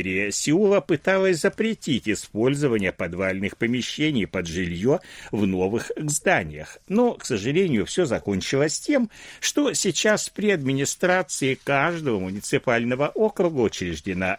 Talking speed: 105 wpm